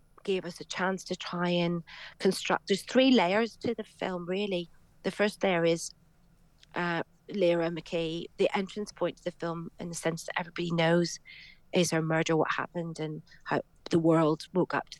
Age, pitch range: 40-59, 160-175 Hz